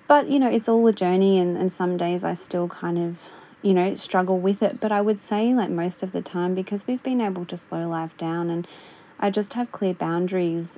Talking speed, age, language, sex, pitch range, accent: 240 wpm, 20-39, English, female, 175-195 Hz, Australian